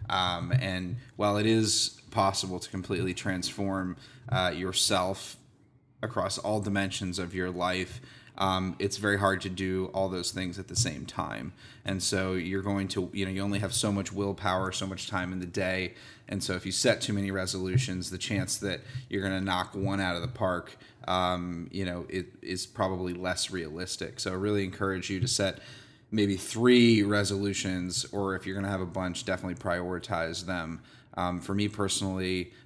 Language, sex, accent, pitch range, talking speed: English, male, American, 90-105 Hz, 185 wpm